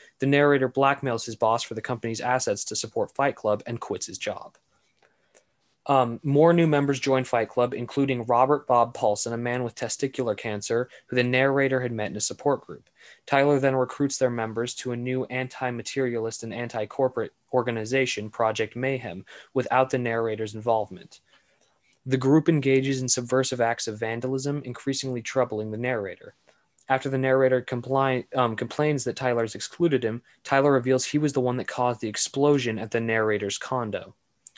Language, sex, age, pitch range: English, male, 20-39, 115-135 Hz